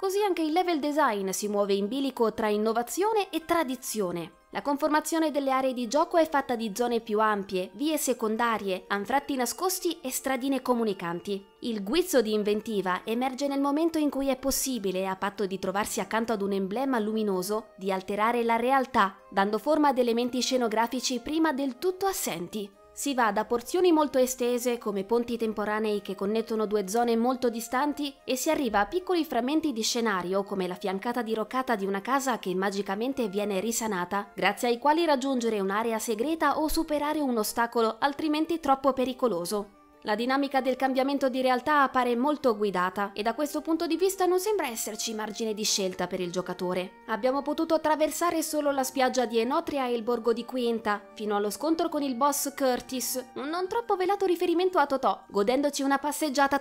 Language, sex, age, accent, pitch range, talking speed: Italian, female, 20-39, native, 215-290 Hz, 175 wpm